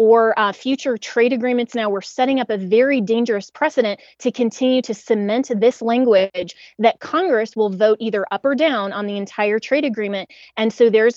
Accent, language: American, English